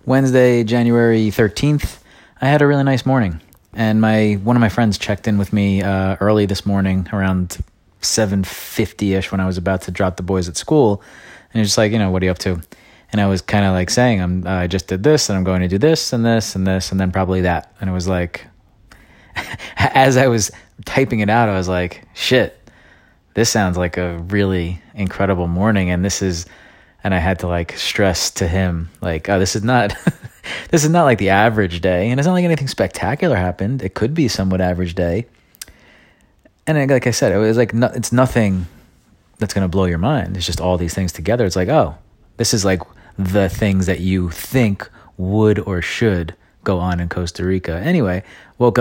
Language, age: English, 20-39